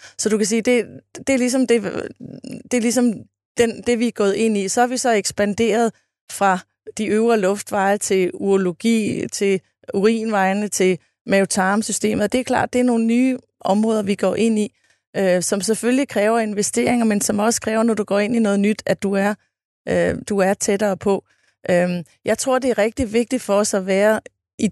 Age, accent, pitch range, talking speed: 30-49, native, 195-225 Hz, 180 wpm